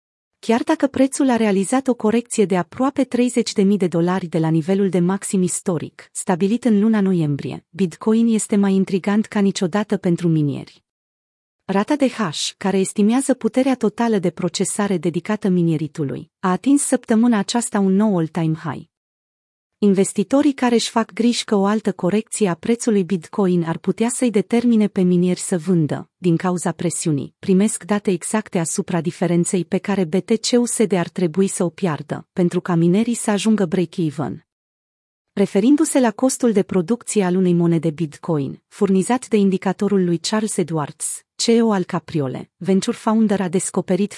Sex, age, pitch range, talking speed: female, 30-49, 180-220 Hz, 155 wpm